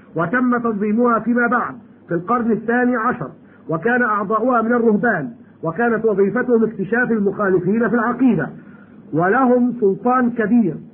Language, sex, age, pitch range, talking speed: Arabic, male, 50-69, 205-245 Hz, 115 wpm